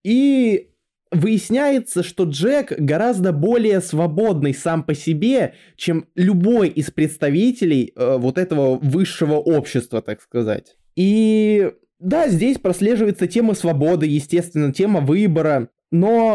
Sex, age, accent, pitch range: male, 20-39, native, 155-205 Hz